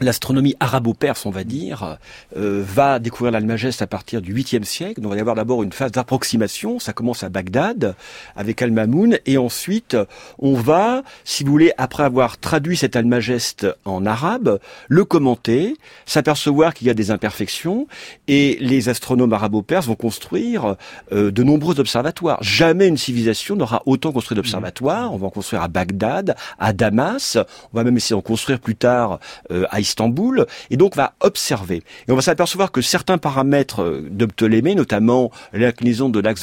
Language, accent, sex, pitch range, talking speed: French, French, male, 110-145 Hz, 170 wpm